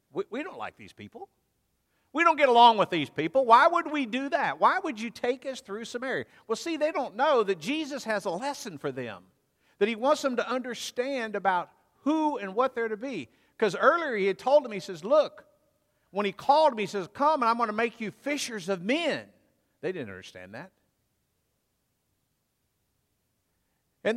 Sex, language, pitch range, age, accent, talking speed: male, English, 200-275 Hz, 50-69, American, 200 wpm